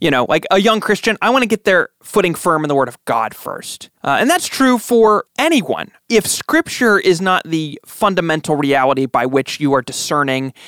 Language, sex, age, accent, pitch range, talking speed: English, male, 20-39, American, 140-200 Hz, 210 wpm